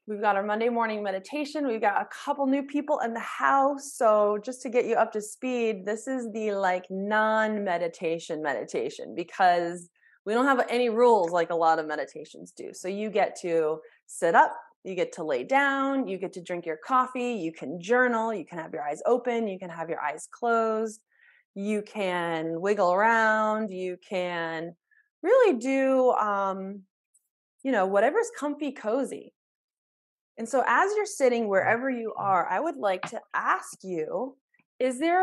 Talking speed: 175 wpm